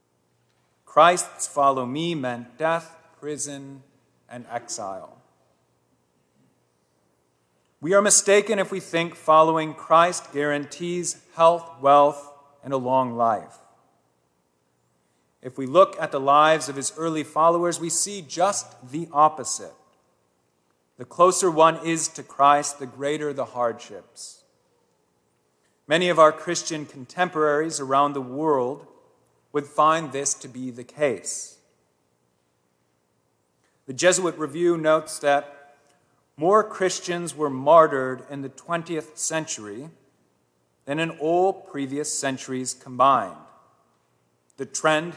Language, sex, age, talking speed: English, male, 40-59, 110 wpm